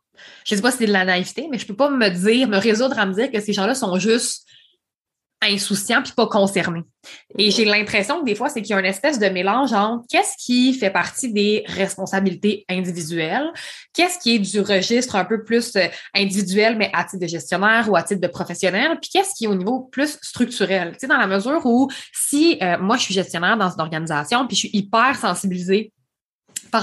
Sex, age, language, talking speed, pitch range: female, 20-39, French, 220 wpm, 185-230 Hz